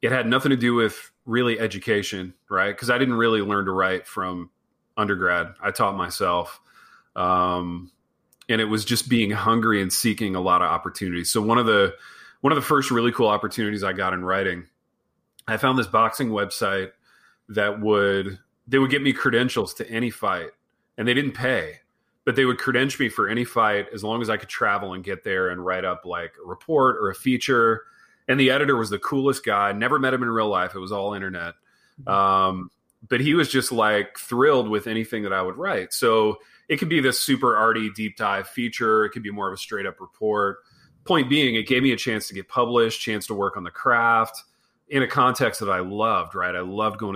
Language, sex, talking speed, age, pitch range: English, male, 215 wpm, 30-49, 100-125 Hz